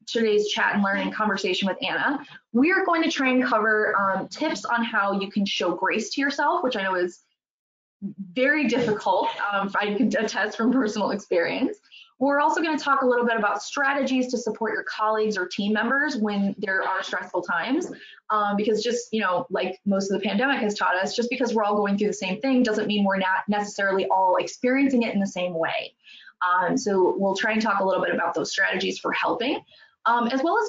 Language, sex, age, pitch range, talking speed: English, female, 20-39, 200-255 Hz, 215 wpm